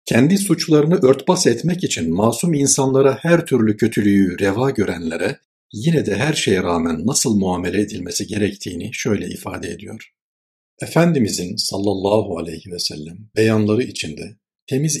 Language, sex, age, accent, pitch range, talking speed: Turkish, male, 60-79, native, 90-115 Hz, 130 wpm